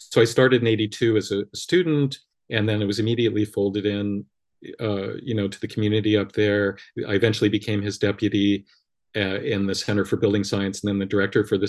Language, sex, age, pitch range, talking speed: English, male, 40-59, 100-115 Hz, 210 wpm